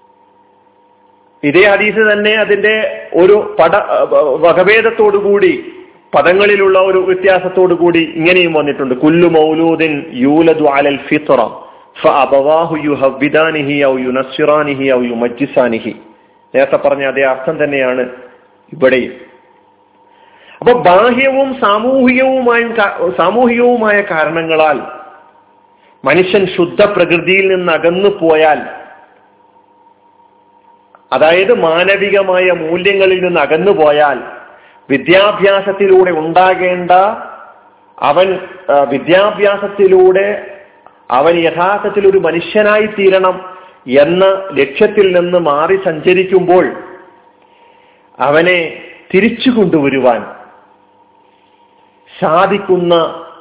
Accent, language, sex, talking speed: native, Malayalam, male, 60 wpm